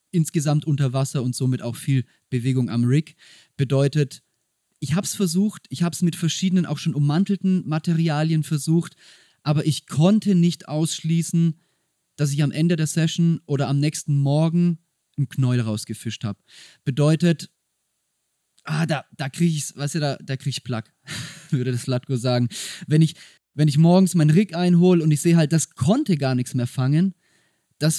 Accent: German